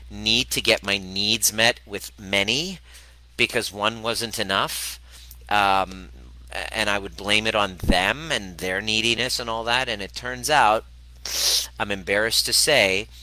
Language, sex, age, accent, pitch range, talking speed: English, male, 40-59, American, 65-105 Hz, 155 wpm